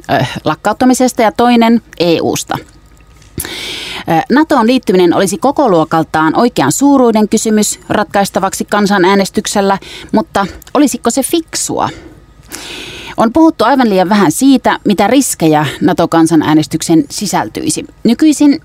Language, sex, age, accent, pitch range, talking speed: Finnish, female, 30-49, native, 175-260 Hz, 95 wpm